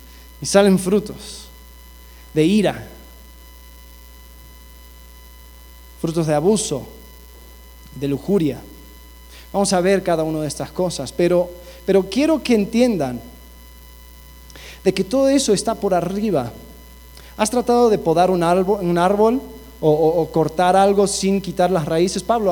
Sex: male